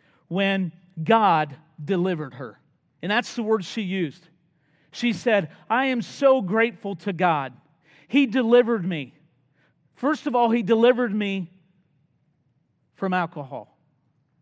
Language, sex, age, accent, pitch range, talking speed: English, male, 40-59, American, 160-225 Hz, 120 wpm